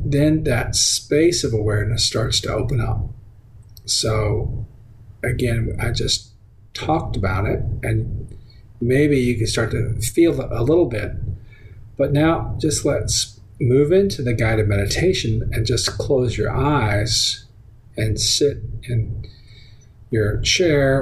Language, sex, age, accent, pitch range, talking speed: English, male, 40-59, American, 110-120 Hz, 130 wpm